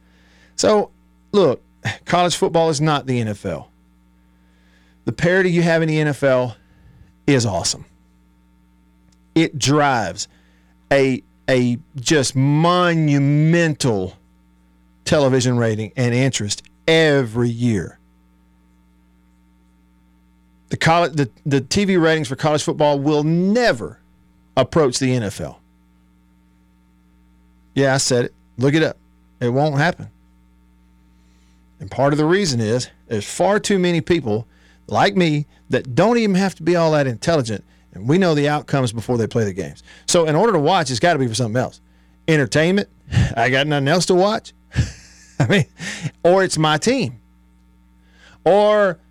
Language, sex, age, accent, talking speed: English, male, 50-69, American, 135 wpm